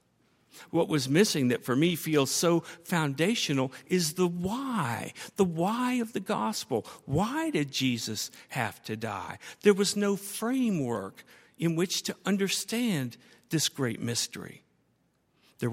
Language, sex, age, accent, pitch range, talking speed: English, male, 60-79, American, 130-195 Hz, 135 wpm